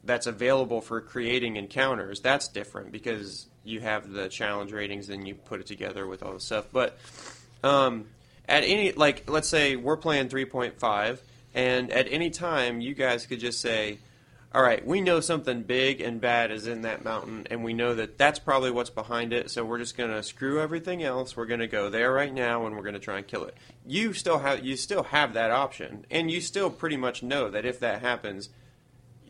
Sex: male